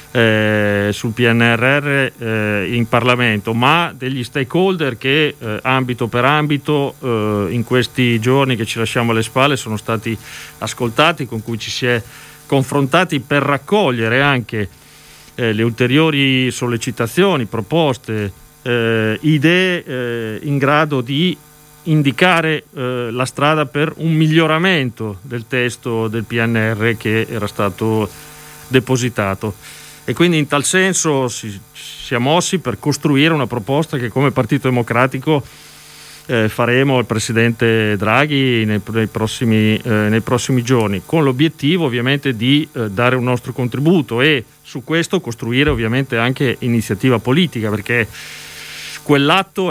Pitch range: 115-150 Hz